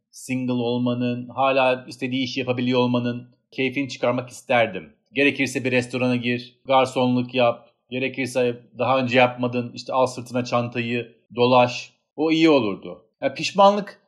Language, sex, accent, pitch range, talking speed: Turkish, male, native, 105-135 Hz, 130 wpm